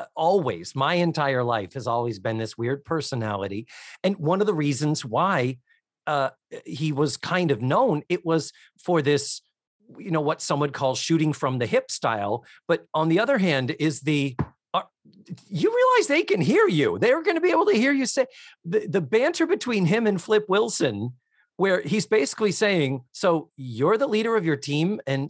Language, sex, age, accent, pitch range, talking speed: English, male, 40-59, American, 140-195 Hz, 185 wpm